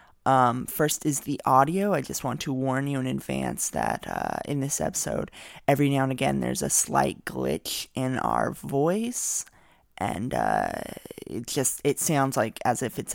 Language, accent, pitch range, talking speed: English, American, 125-160 Hz, 180 wpm